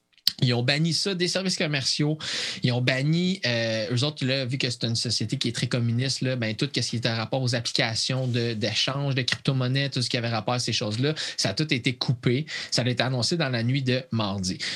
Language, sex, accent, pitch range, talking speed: French, male, Canadian, 120-155 Hz, 230 wpm